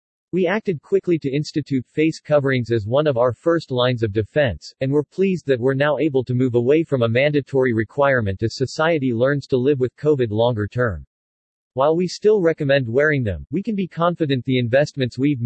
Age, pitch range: 40-59, 120-150 Hz